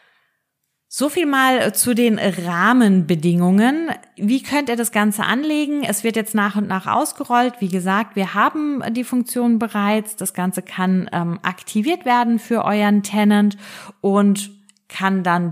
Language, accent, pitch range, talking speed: German, German, 175-225 Hz, 145 wpm